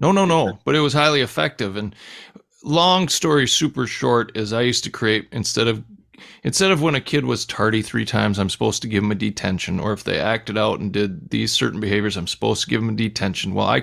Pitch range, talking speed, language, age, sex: 105-120 Hz, 240 wpm, English, 40-59, male